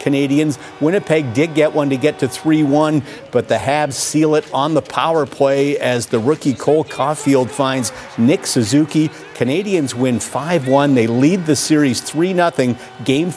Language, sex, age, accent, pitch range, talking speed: English, male, 50-69, American, 120-150 Hz, 155 wpm